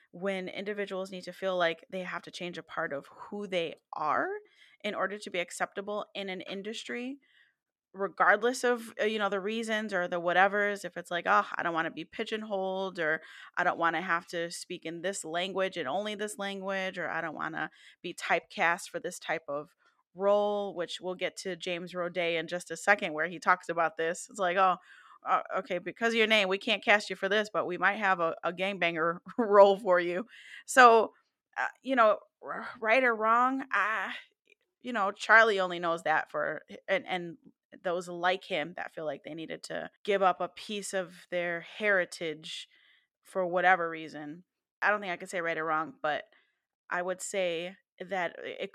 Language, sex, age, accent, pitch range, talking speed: English, female, 20-39, American, 175-205 Hz, 195 wpm